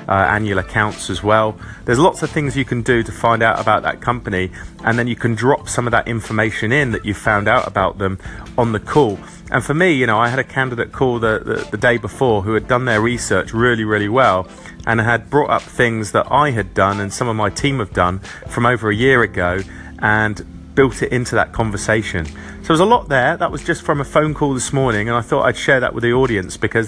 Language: English